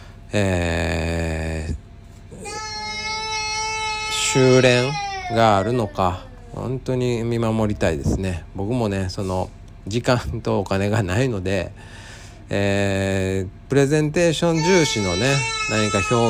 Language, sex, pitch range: Japanese, male, 95-125 Hz